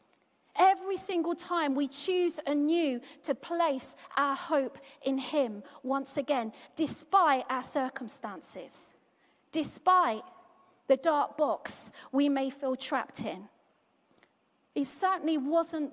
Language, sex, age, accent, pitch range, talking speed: English, female, 40-59, British, 255-315 Hz, 110 wpm